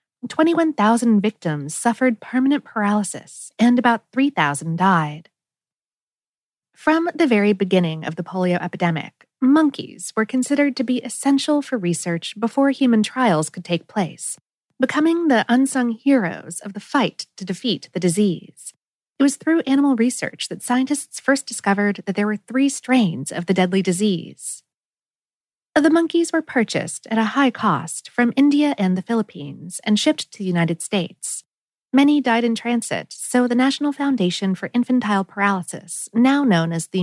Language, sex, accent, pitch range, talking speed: English, female, American, 180-265 Hz, 150 wpm